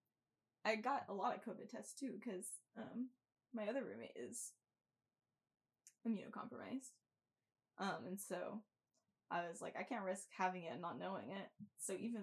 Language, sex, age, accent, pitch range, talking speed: English, female, 10-29, American, 190-255 Hz, 155 wpm